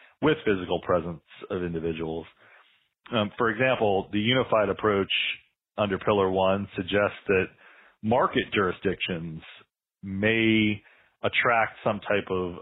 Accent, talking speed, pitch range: American, 110 wpm, 95-115 Hz